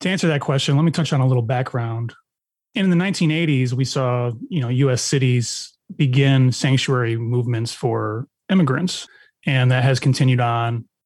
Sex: male